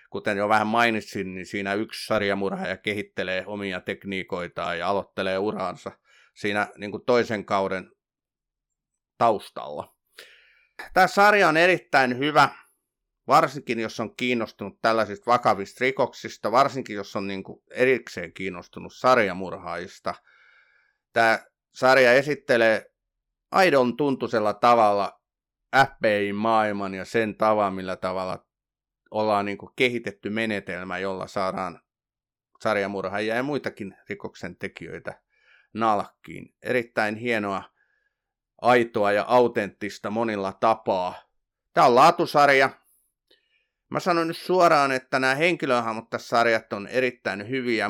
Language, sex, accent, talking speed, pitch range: Finnish, male, native, 105 wpm, 100-125 Hz